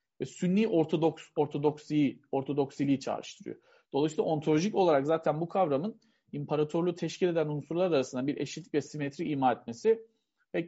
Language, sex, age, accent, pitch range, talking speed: Turkish, male, 40-59, native, 140-195 Hz, 135 wpm